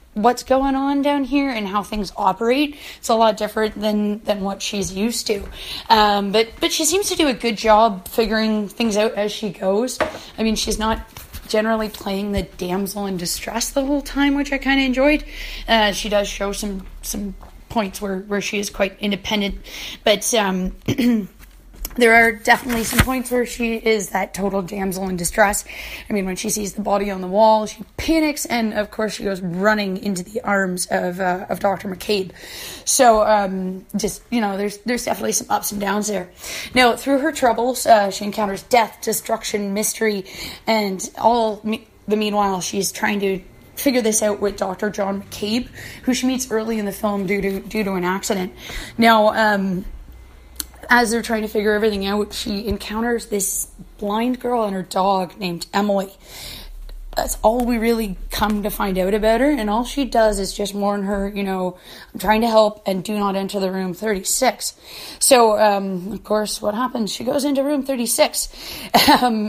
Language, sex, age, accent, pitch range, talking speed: English, female, 30-49, American, 200-230 Hz, 190 wpm